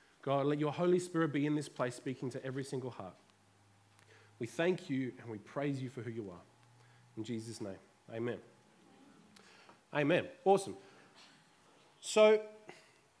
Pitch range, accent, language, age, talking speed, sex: 130-190 Hz, Australian, English, 20-39, 145 wpm, male